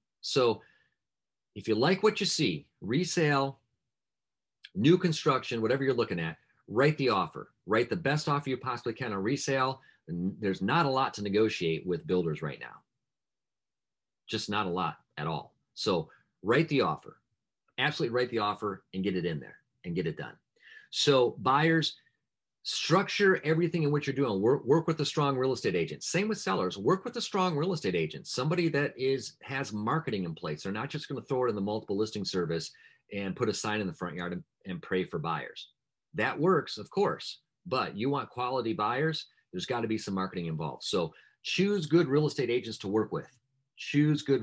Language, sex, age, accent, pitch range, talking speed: English, male, 40-59, American, 100-155 Hz, 195 wpm